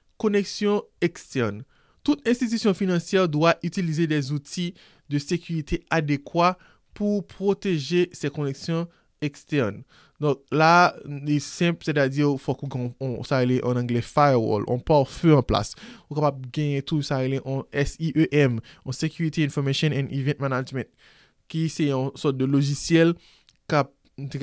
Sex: male